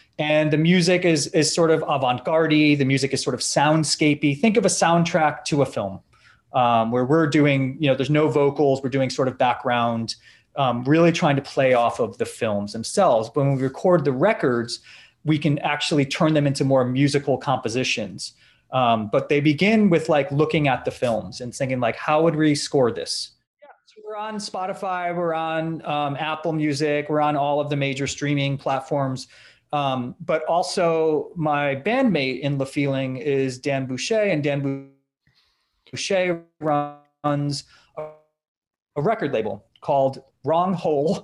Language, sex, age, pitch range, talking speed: English, male, 30-49, 135-155 Hz, 180 wpm